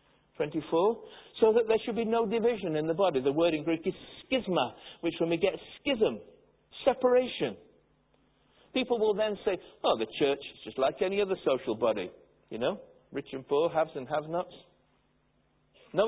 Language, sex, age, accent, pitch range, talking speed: English, male, 60-79, British, 150-215 Hz, 170 wpm